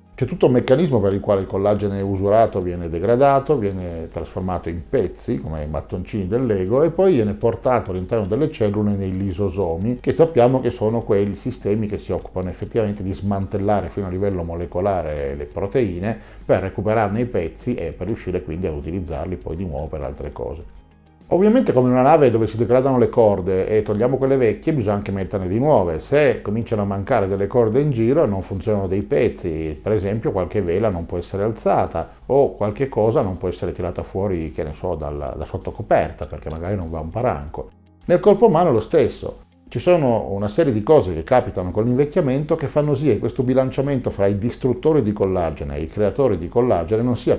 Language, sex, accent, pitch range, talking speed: Italian, male, native, 90-120 Hz, 195 wpm